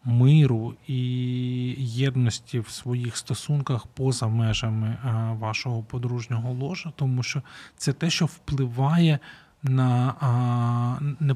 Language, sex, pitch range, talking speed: Ukrainian, male, 125-145 Hz, 100 wpm